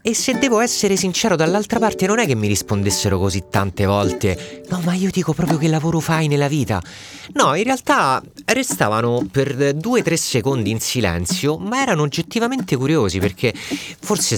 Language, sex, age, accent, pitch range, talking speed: Italian, male, 30-49, native, 100-150 Hz, 175 wpm